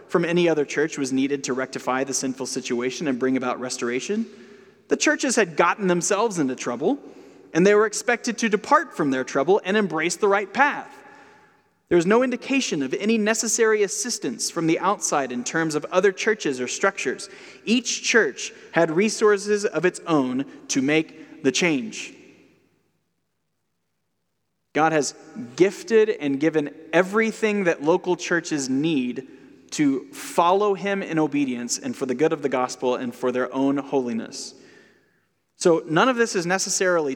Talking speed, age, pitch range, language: 160 wpm, 30-49, 140-220 Hz, English